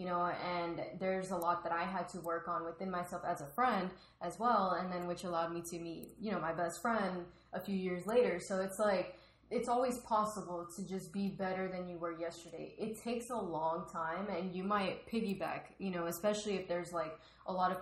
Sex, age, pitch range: female, 10-29, 175-205 Hz